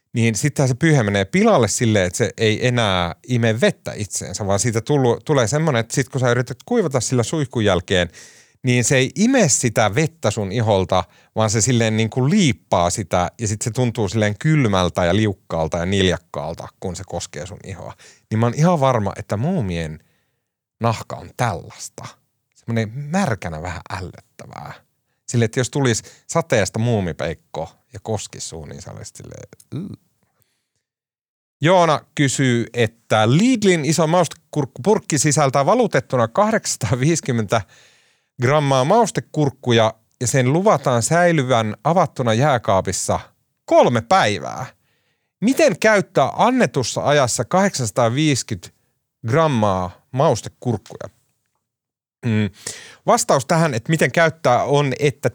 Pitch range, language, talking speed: 110-150 Hz, Finnish, 125 wpm